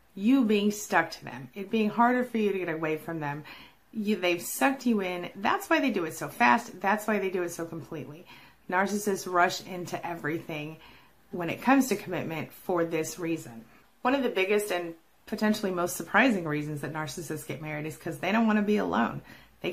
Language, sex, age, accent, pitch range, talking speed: English, female, 30-49, American, 165-215 Hz, 205 wpm